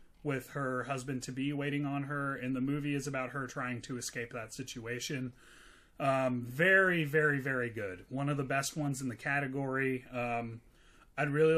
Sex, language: male, English